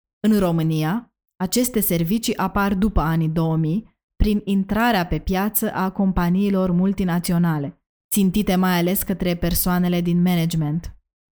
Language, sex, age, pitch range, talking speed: Romanian, female, 20-39, 170-200 Hz, 115 wpm